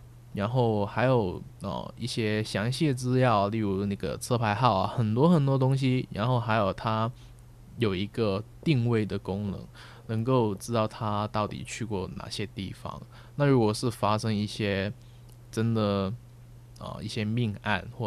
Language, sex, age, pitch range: Chinese, male, 20-39, 100-120 Hz